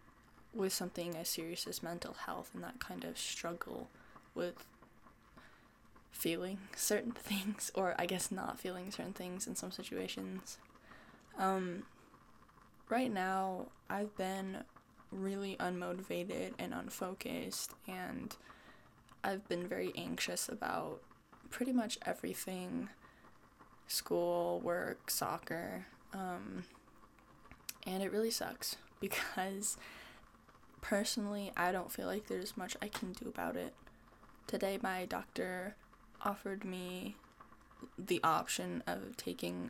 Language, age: English, 10-29